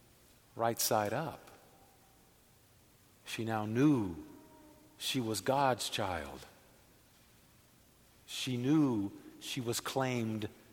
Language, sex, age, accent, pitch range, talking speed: English, male, 50-69, American, 115-165 Hz, 85 wpm